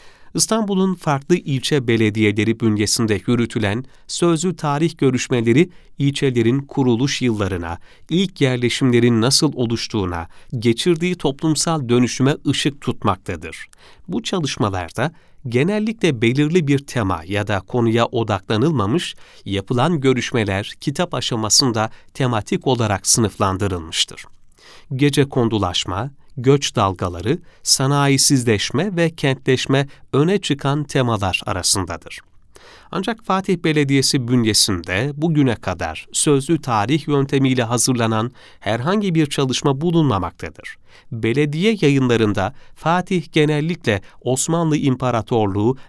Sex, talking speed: male, 90 wpm